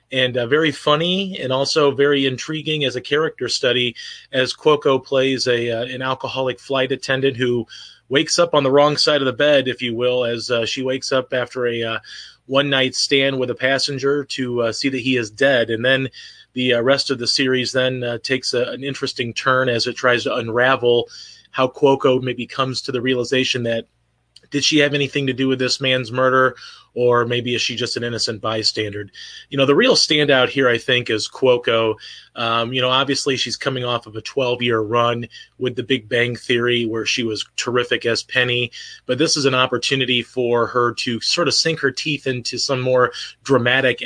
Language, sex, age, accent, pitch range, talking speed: English, male, 30-49, American, 120-135 Hz, 205 wpm